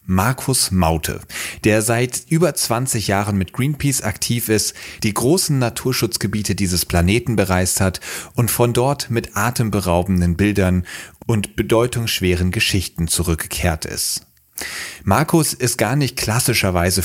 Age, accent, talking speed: 30-49, German, 120 wpm